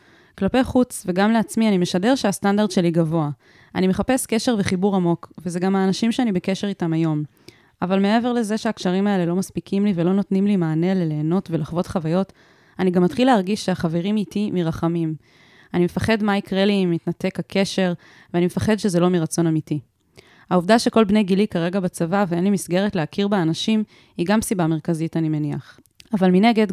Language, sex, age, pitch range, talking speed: Hebrew, female, 20-39, 170-205 Hz, 170 wpm